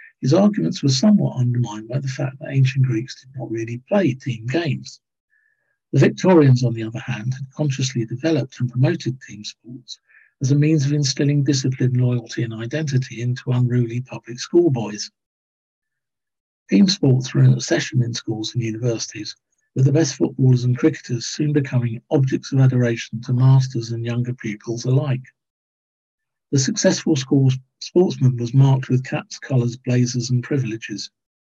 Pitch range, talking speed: 120-145 Hz, 155 wpm